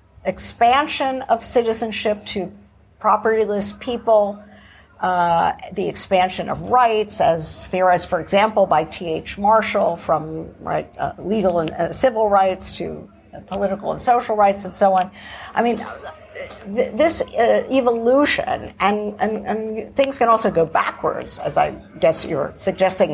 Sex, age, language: female, 50-69, English